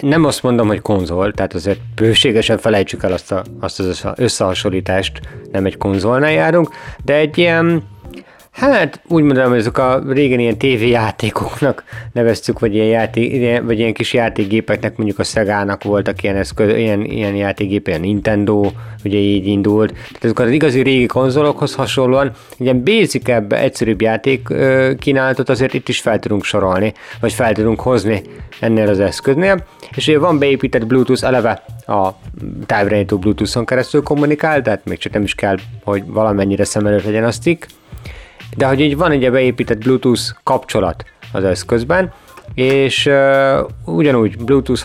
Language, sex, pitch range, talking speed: Hungarian, male, 105-135 Hz, 150 wpm